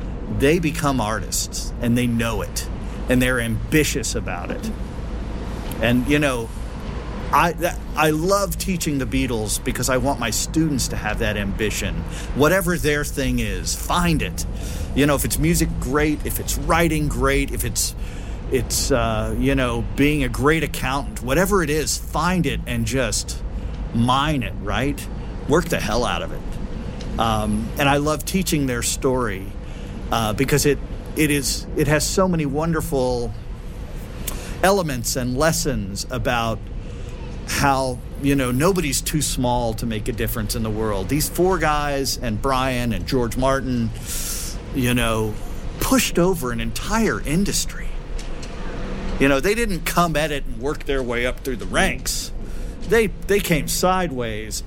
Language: Finnish